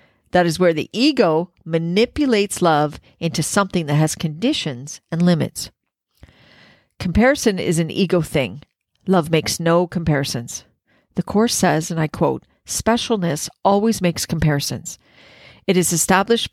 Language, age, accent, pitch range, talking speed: English, 50-69, American, 155-185 Hz, 130 wpm